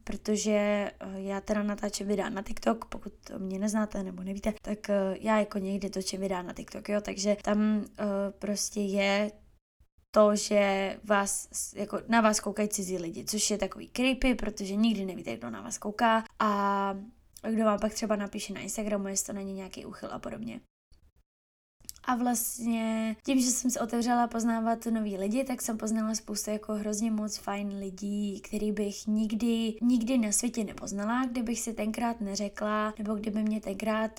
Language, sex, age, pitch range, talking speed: Czech, female, 20-39, 200-230 Hz, 165 wpm